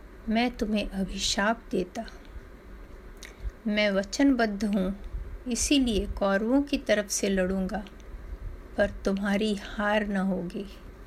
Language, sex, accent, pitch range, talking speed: Hindi, female, native, 195-250 Hz, 100 wpm